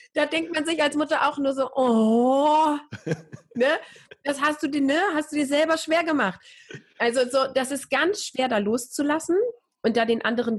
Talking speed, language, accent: 195 wpm, German, German